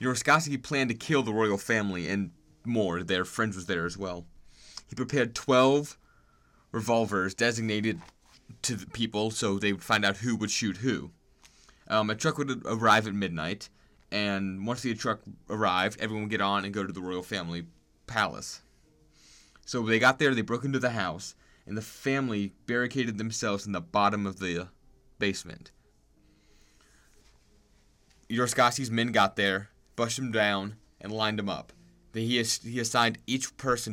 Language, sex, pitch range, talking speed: English, male, 100-125 Hz, 165 wpm